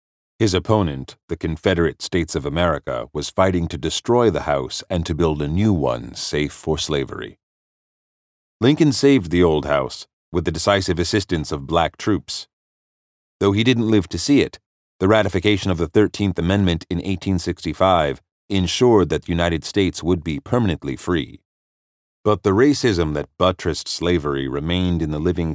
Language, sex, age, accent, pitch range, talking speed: English, male, 40-59, American, 75-95 Hz, 160 wpm